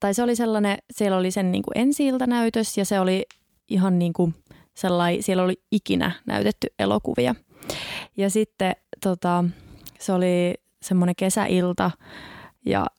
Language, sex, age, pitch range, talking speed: Finnish, female, 20-39, 180-225 Hz, 140 wpm